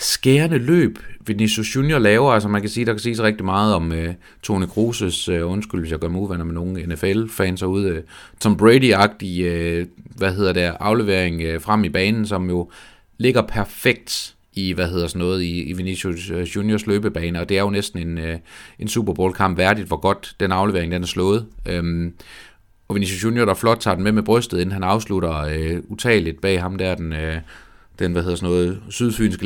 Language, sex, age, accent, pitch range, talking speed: Danish, male, 30-49, native, 90-110 Hz, 210 wpm